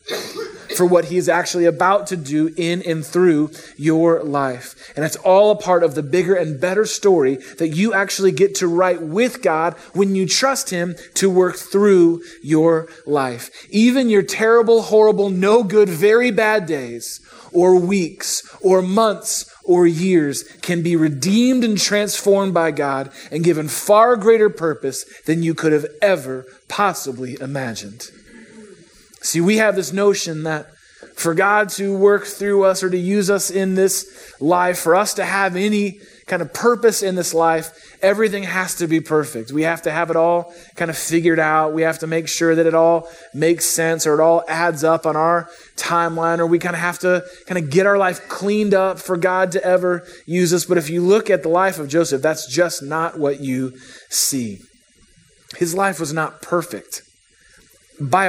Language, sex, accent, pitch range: English, male, American, 165-195 Hz